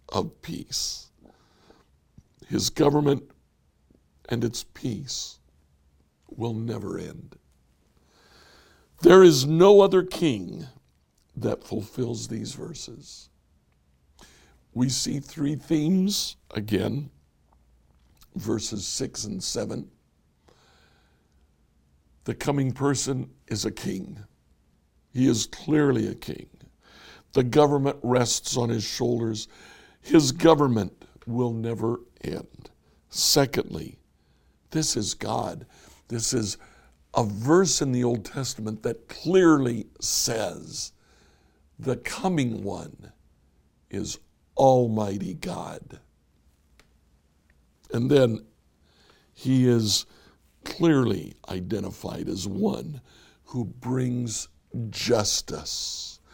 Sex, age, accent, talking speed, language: male, 60-79, American, 85 wpm, English